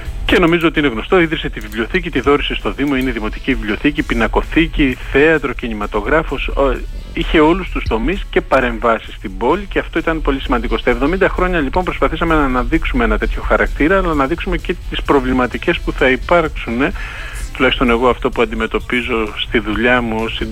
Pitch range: 115-150 Hz